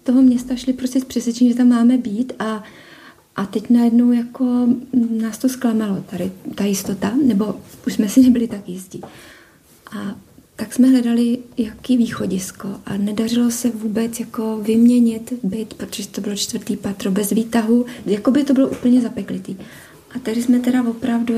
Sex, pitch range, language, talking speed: female, 210-245 Hz, Czech, 165 wpm